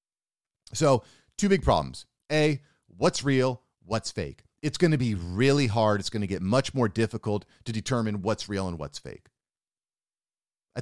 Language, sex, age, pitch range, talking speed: English, male, 40-59, 110-145 Hz, 165 wpm